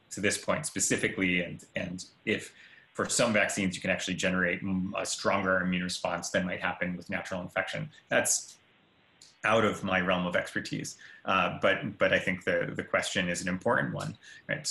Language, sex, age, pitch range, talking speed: English, male, 30-49, 90-105 Hz, 180 wpm